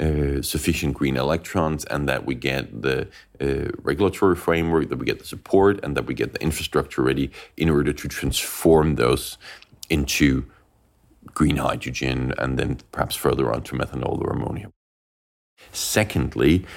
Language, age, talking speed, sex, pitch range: English, 40-59, 150 wpm, male, 70-80 Hz